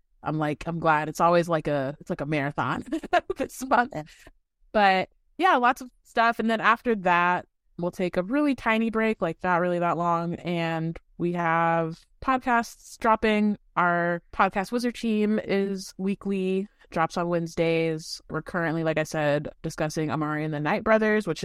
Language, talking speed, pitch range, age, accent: English, 170 wpm, 150-185 Hz, 20-39, American